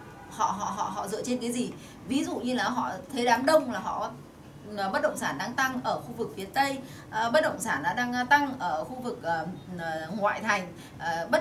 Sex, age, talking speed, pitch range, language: female, 20-39, 210 wpm, 200-270 Hz, Vietnamese